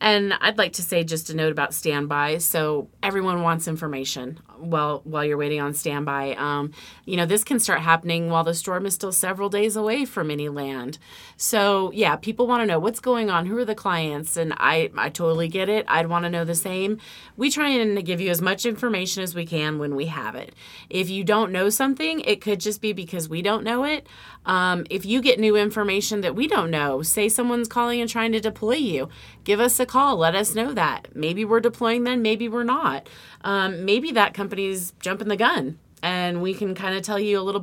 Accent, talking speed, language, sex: American, 225 wpm, English, female